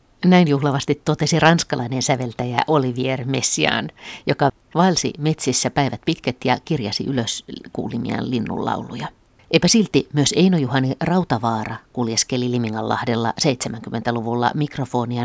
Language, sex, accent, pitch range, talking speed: Finnish, female, native, 120-150 Hz, 100 wpm